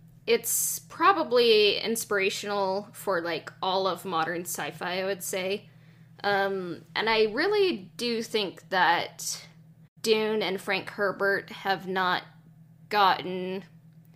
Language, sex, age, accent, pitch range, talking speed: English, female, 10-29, American, 160-200 Hz, 110 wpm